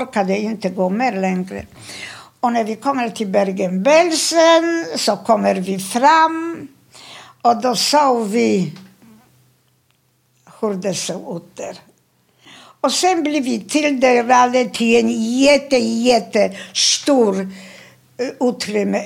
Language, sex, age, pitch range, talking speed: Swedish, female, 60-79, 205-275 Hz, 115 wpm